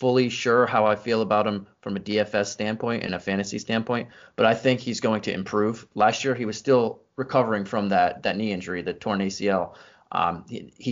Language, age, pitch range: English, 20-39, 100-120 Hz